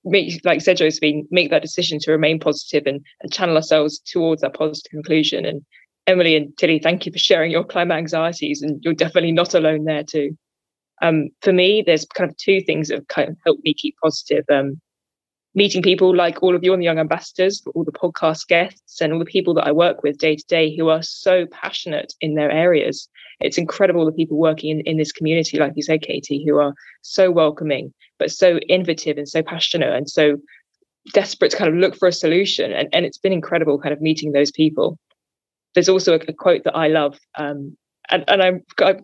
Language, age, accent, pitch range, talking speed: English, 20-39, British, 155-185 Hz, 220 wpm